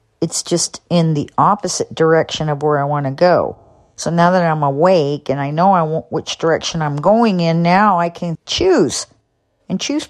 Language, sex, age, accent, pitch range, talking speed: English, female, 50-69, American, 130-170 Hz, 195 wpm